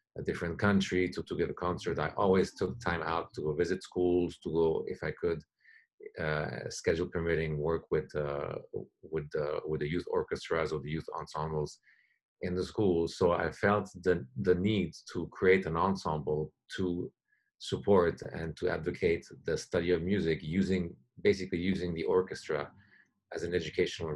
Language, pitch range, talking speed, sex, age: English, 75-90 Hz, 170 wpm, male, 40-59